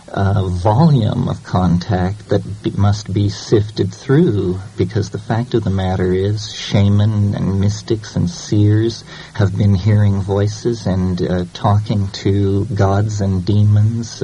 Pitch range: 95-110 Hz